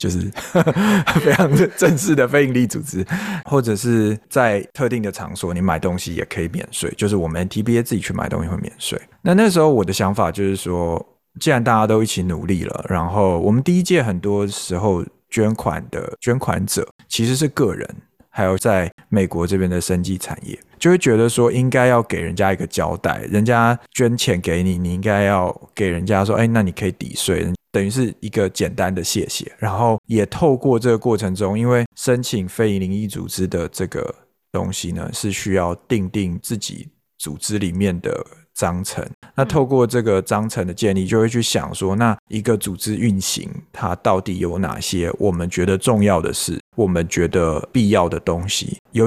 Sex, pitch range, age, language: male, 95-120 Hz, 20-39, Chinese